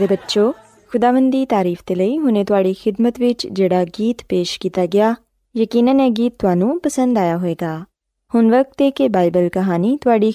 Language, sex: Urdu, female